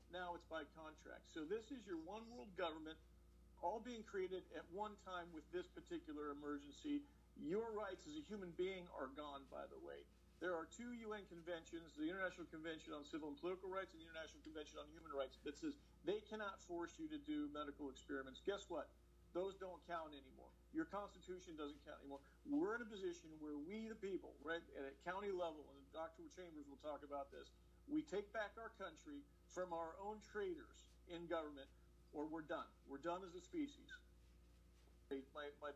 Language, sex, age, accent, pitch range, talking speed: English, male, 50-69, American, 150-195 Hz, 190 wpm